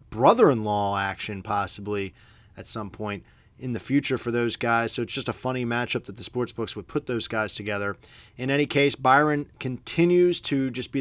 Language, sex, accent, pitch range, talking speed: English, male, American, 115-155 Hz, 185 wpm